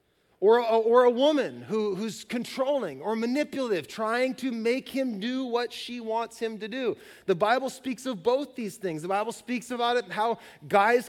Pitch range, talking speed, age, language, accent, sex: 190-255 Hz, 190 wpm, 30-49, English, American, male